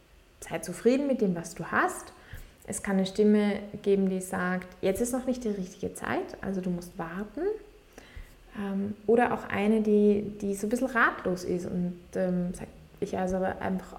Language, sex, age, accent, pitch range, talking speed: German, female, 20-39, German, 185-230 Hz, 175 wpm